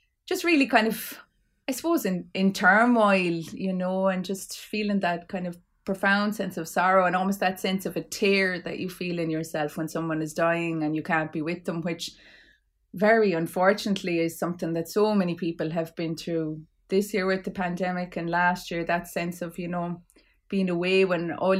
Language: English